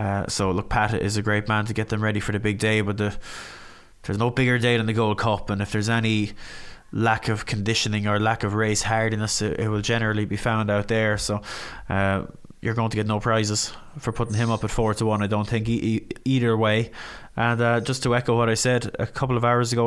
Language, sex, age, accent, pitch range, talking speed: English, male, 20-39, Irish, 110-120 Hz, 245 wpm